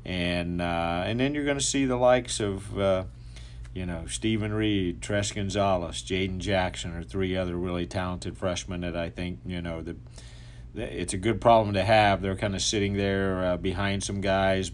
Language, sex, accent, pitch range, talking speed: English, male, American, 85-100 Hz, 195 wpm